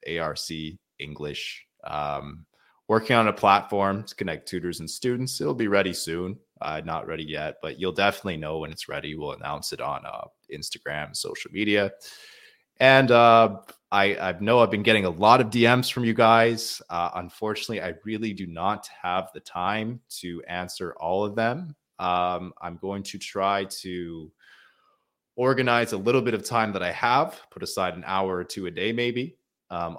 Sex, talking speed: male, 180 wpm